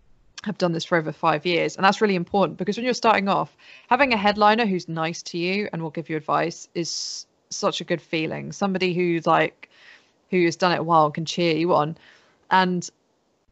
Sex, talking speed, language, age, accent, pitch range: female, 215 wpm, English, 20-39, British, 165-195 Hz